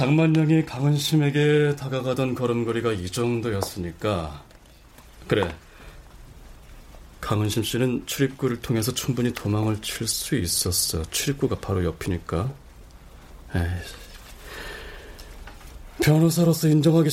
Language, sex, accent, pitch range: Korean, male, native, 95-150 Hz